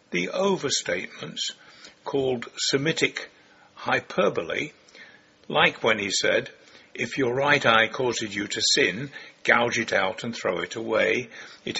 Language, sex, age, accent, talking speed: English, male, 60-79, British, 120 wpm